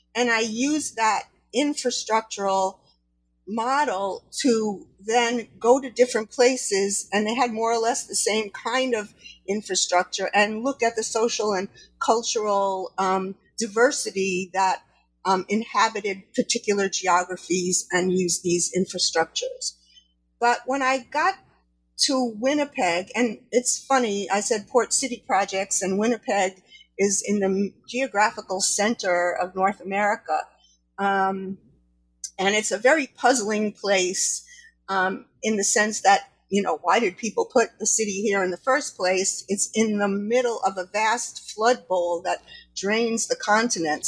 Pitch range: 190-235 Hz